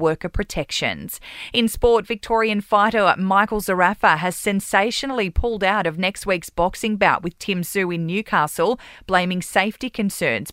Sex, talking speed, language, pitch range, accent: female, 140 wpm, English, 180-225 Hz, Australian